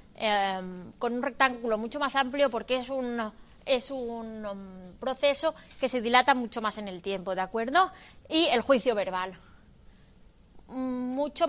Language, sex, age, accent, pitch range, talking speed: Spanish, female, 20-39, Spanish, 220-270 Hz, 150 wpm